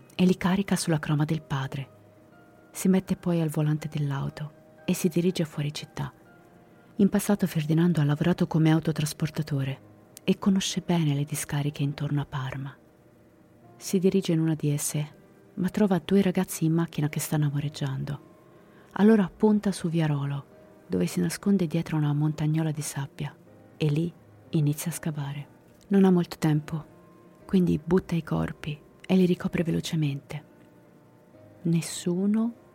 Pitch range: 145-180 Hz